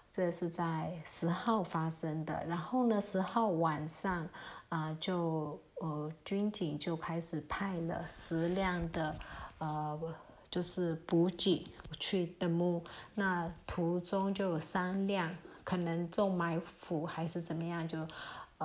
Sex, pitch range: female, 170-195 Hz